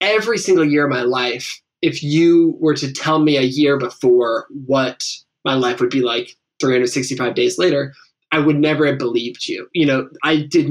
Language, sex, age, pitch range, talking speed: English, male, 20-39, 130-155 Hz, 190 wpm